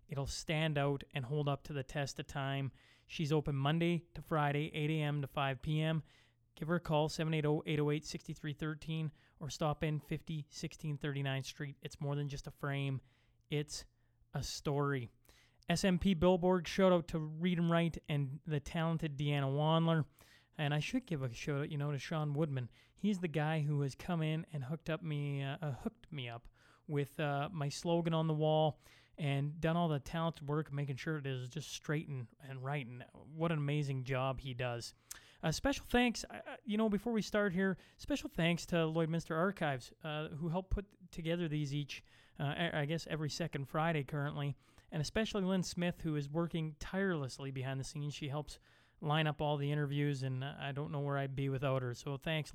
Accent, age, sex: American, 30-49, male